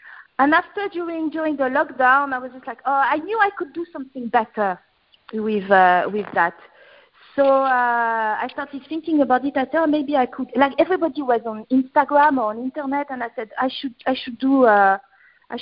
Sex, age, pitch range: female, 50-69, 215-275 Hz